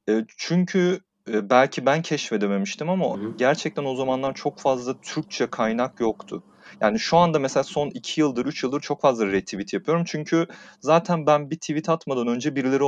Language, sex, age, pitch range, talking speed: Turkish, male, 30-49, 110-155 Hz, 160 wpm